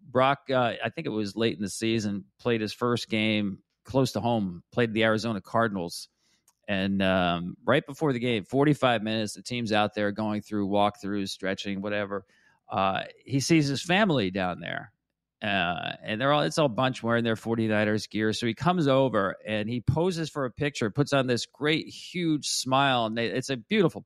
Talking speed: 195 wpm